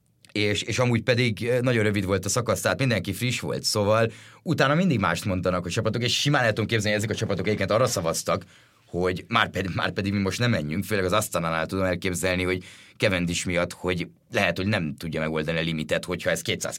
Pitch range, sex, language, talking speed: 90-110 Hz, male, Hungarian, 215 wpm